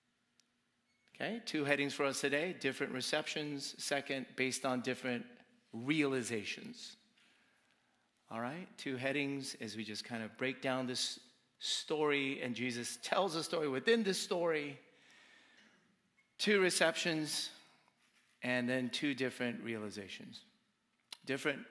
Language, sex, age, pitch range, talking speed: English, male, 40-59, 130-195 Hz, 115 wpm